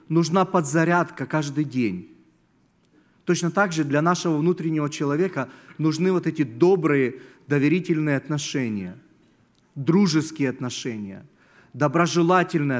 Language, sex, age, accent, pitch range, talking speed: Russian, male, 40-59, native, 135-180 Hz, 95 wpm